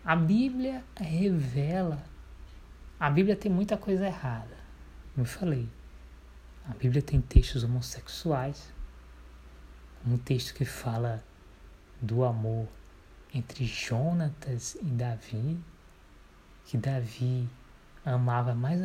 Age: 20-39